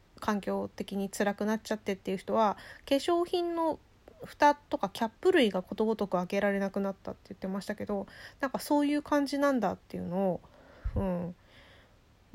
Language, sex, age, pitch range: Japanese, female, 20-39, 185-275 Hz